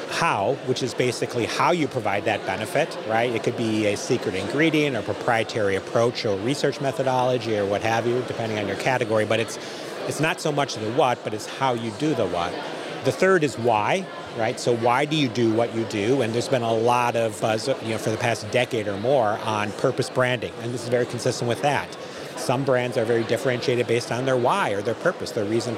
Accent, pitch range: American, 115-130 Hz